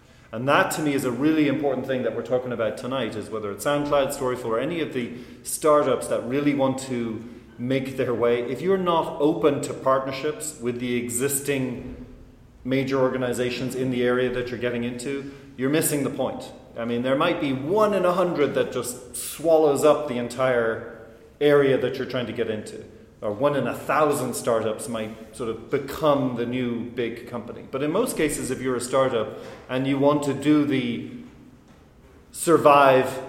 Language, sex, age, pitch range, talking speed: English, male, 30-49, 120-140 Hz, 185 wpm